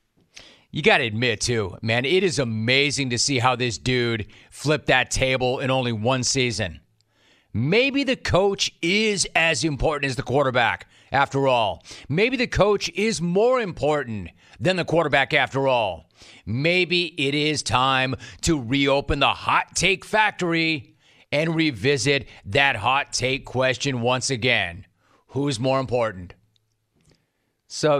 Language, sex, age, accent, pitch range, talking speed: English, male, 30-49, American, 115-155 Hz, 140 wpm